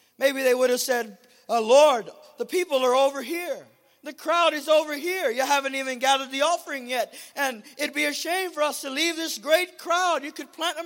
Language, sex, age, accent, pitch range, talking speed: English, male, 50-69, American, 255-310 Hz, 220 wpm